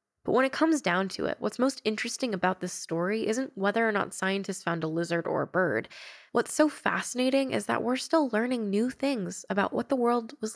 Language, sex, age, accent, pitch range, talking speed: English, female, 10-29, American, 180-220 Hz, 220 wpm